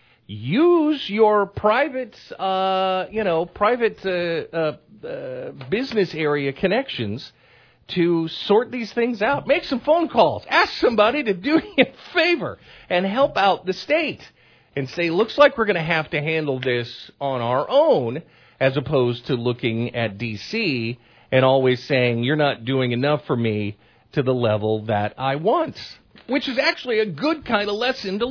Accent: American